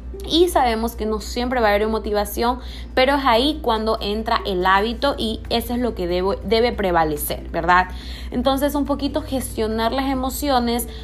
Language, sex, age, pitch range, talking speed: Spanish, female, 20-39, 200-250 Hz, 165 wpm